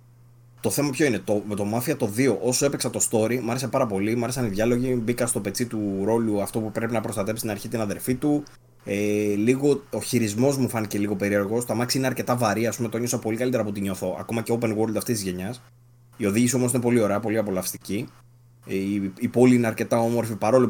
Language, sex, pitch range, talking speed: Greek, male, 100-125 Hz, 230 wpm